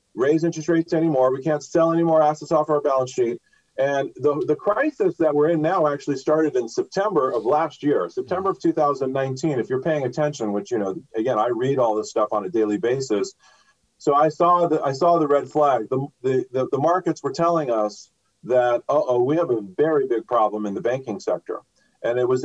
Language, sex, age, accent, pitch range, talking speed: English, male, 40-59, American, 130-165 Hz, 215 wpm